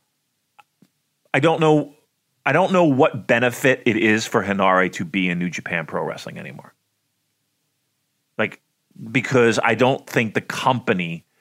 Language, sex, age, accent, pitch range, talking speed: English, male, 30-49, American, 95-135 Hz, 140 wpm